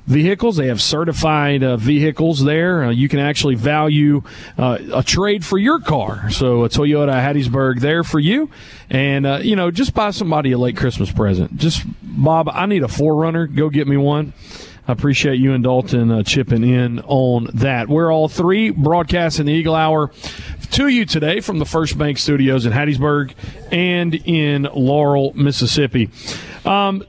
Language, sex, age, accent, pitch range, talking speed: English, male, 40-59, American, 130-165 Hz, 175 wpm